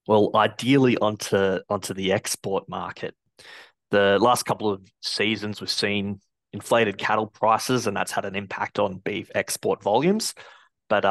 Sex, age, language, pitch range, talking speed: male, 20-39, English, 95-110 Hz, 145 wpm